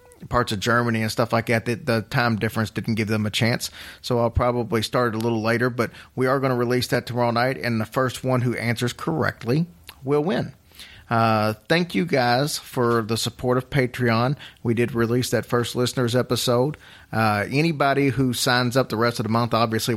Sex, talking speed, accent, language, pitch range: male, 205 wpm, American, English, 110-130 Hz